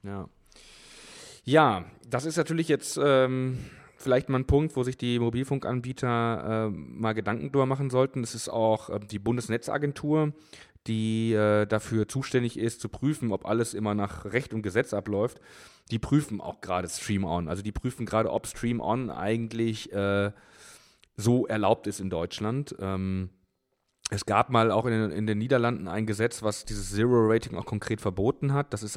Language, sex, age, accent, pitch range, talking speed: German, male, 30-49, German, 105-120 Hz, 170 wpm